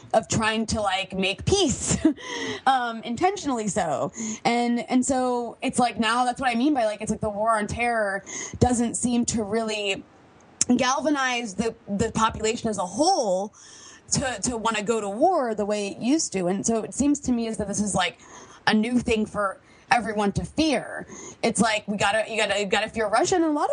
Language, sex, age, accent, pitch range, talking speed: English, female, 20-39, American, 210-255 Hz, 205 wpm